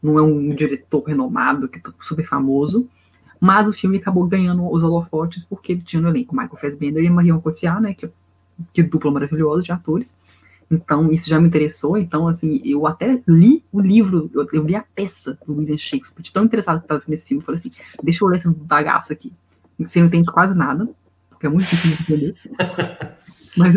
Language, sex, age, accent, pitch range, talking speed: Portuguese, female, 20-39, Brazilian, 150-185 Hz, 200 wpm